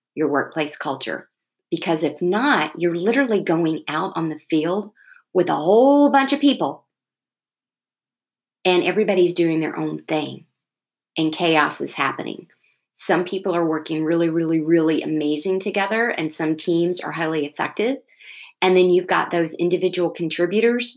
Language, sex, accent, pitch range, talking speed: English, female, American, 160-210 Hz, 145 wpm